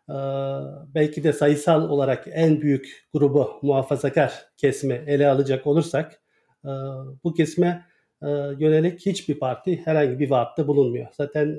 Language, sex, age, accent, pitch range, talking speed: Turkish, male, 50-69, native, 140-165 Hz, 130 wpm